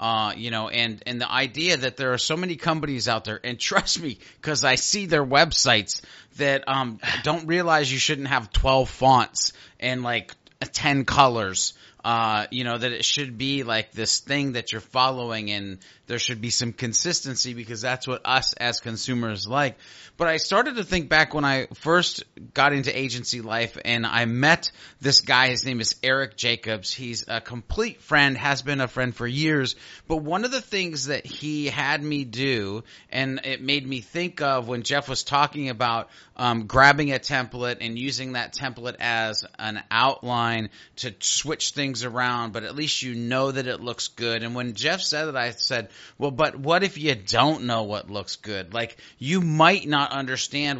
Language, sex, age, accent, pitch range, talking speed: English, male, 30-49, American, 120-150 Hz, 190 wpm